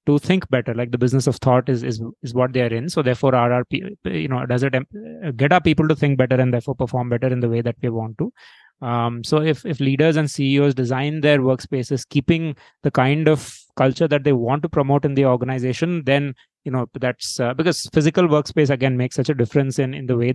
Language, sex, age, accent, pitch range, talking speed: English, male, 20-39, Indian, 125-145 Hz, 235 wpm